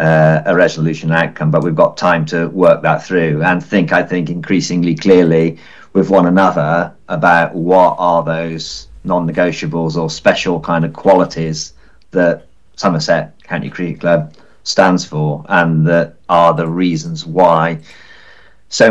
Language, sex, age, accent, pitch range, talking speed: English, male, 40-59, British, 85-95 Hz, 145 wpm